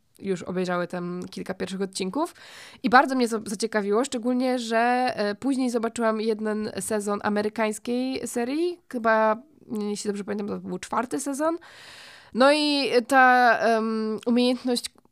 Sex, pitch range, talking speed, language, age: female, 200-240 Hz, 125 wpm, Polish, 20-39